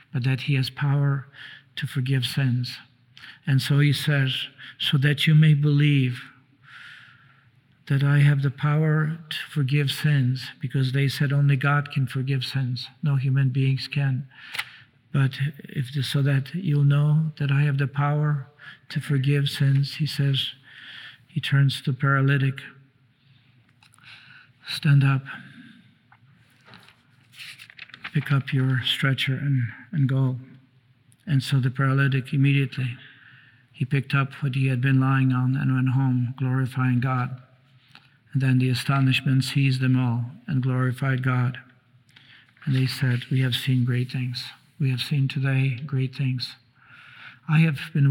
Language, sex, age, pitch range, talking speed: English, male, 50-69, 130-145 Hz, 140 wpm